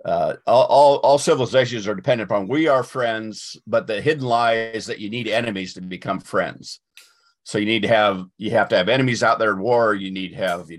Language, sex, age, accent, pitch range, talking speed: English, male, 50-69, American, 100-125 Hz, 235 wpm